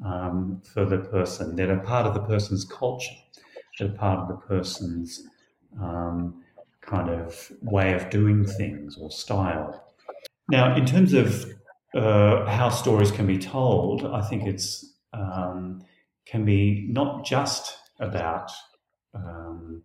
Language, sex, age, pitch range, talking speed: English, male, 40-59, 95-115 Hz, 140 wpm